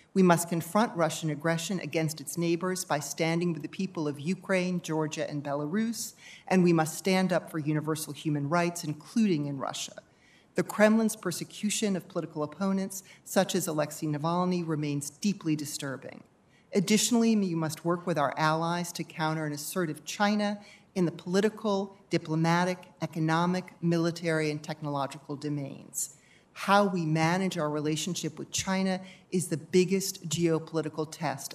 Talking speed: 145 wpm